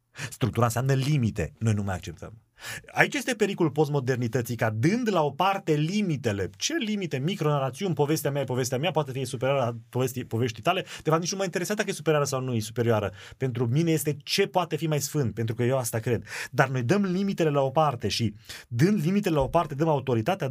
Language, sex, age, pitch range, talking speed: Romanian, male, 30-49, 115-165 Hz, 215 wpm